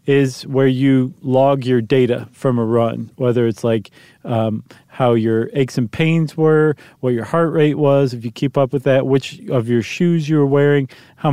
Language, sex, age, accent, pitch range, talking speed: English, male, 40-59, American, 120-150 Hz, 200 wpm